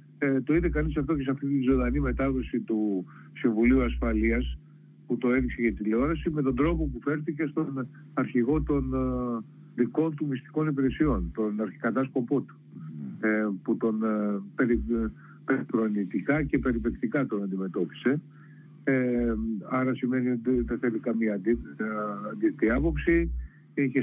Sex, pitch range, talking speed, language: male, 110-150 Hz, 120 wpm, Greek